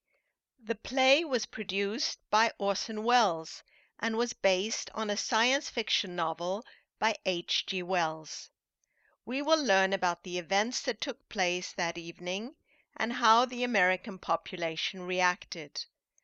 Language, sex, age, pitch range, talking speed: English, female, 50-69, 180-235 Hz, 130 wpm